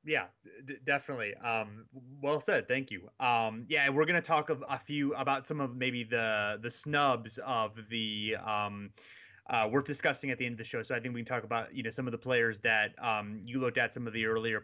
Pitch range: 110-140 Hz